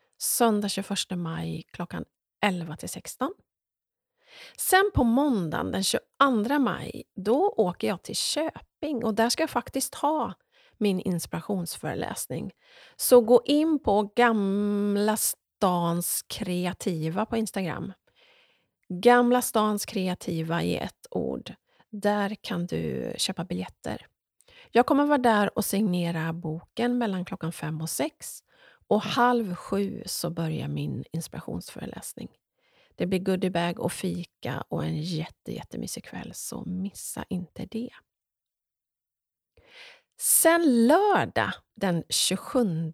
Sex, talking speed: female, 115 wpm